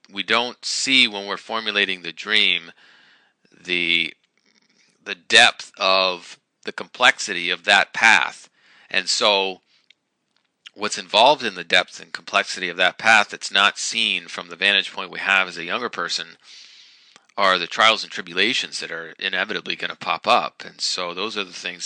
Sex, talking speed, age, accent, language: male, 165 wpm, 40-59, American, English